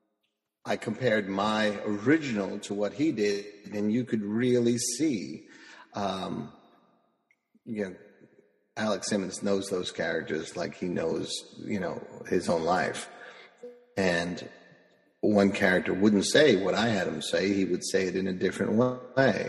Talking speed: 145 wpm